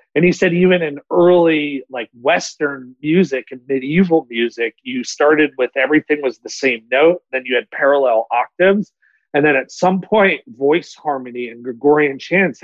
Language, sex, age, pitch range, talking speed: English, male, 40-59, 130-170 Hz, 165 wpm